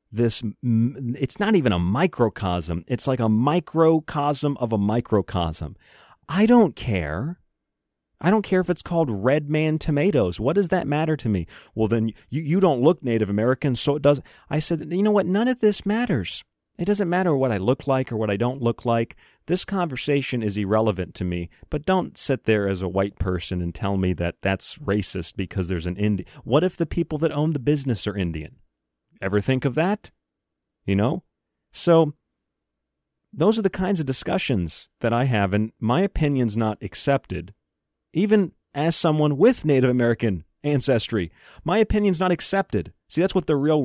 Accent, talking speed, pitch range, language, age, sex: American, 185 wpm, 100-155 Hz, English, 40-59, male